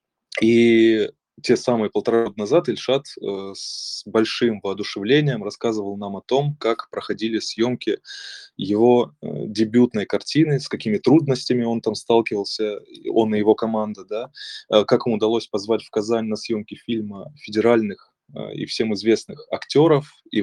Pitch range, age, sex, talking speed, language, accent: 105-125 Hz, 20-39, male, 130 wpm, Russian, native